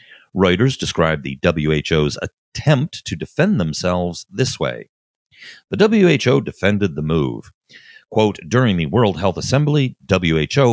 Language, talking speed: English, 125 wpm